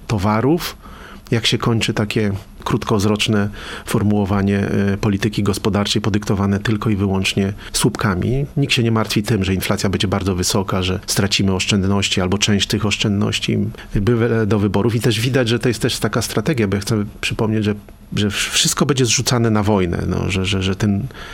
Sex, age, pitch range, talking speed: male, 40-59, 100-115 Hz, 165 wpm